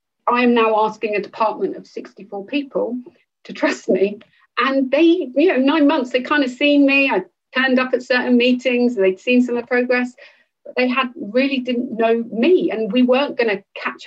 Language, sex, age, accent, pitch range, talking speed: English, female, 40-59, British, 205-250 Hz, 205 wpm